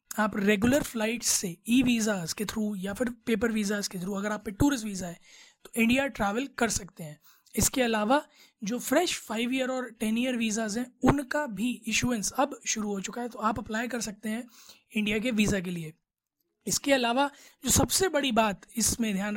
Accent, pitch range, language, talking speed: native, 210-260 Hz, Hindi, 200 wpm